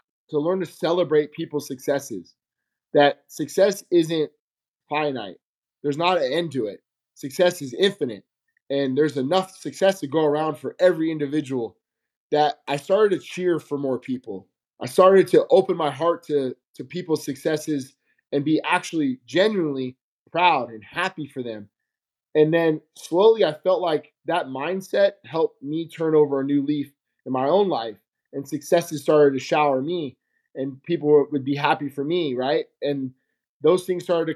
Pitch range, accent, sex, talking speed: 140-175 Hz, American, male, 165 wpm